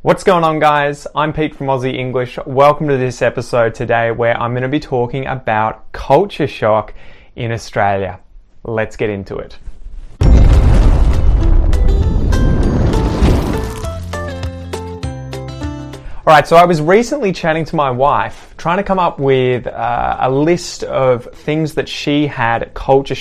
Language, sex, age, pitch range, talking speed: English, male, 20-39, 110-145 Hz, 135 wpm